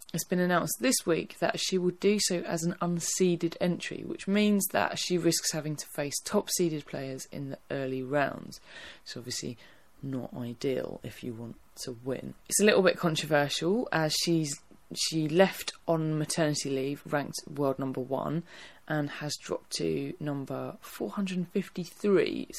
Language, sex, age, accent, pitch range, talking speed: English, female, 20-39, British, 135-170 Hz, 160 wpm